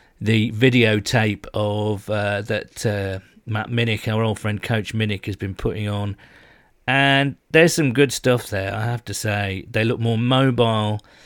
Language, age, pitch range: English, 40-59, 105-125 Hz